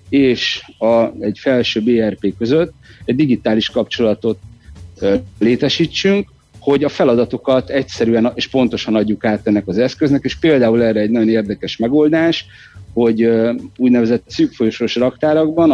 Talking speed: 130 wpm